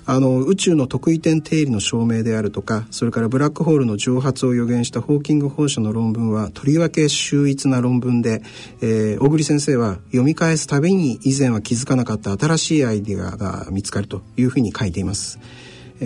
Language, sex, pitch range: Japanese, male, 110-145 Hz